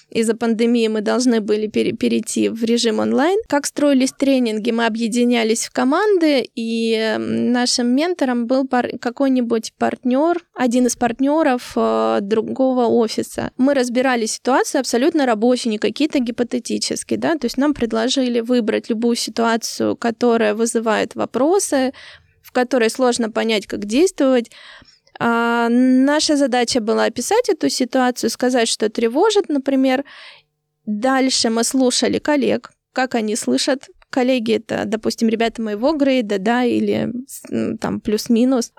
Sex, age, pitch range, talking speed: female, 20-39, 230-270 Hz, 125 wpm